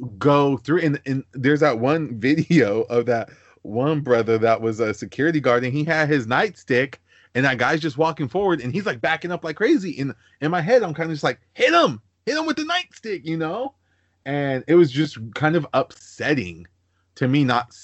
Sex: male